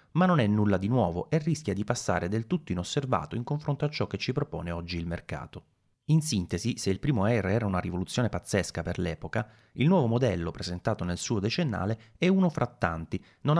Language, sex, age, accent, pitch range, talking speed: Italian, male, 30-49, native, 90-125 Hz, 205 wpm